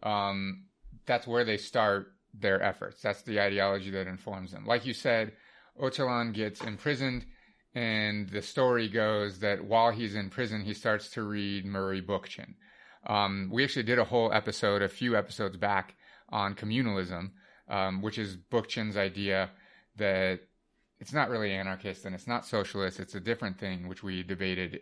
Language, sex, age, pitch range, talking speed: English, male, 30-49, 95-110 Hz, 165 wpm